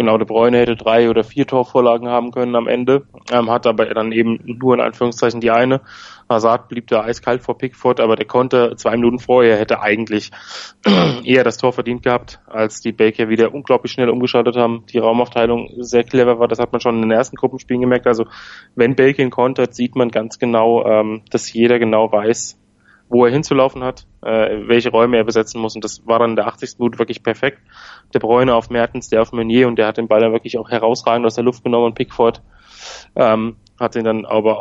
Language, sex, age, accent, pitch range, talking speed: German, male, 20-39, German, 110-125 Hz, 215 wpm